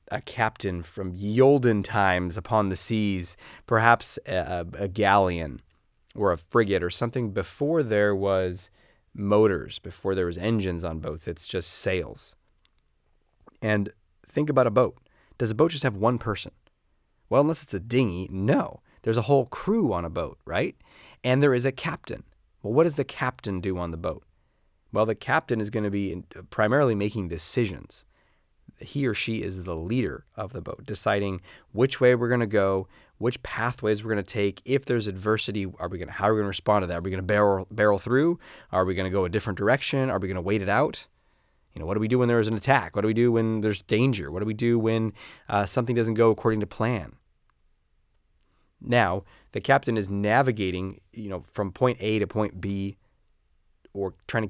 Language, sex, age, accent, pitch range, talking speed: English, male, 30-49, American, 95-120 Hz, 205 wpm